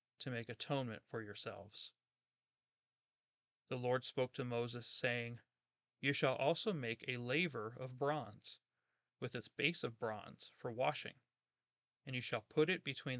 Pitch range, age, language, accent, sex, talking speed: 120-150 Hz, 30-49, English, American, male, 145 wpm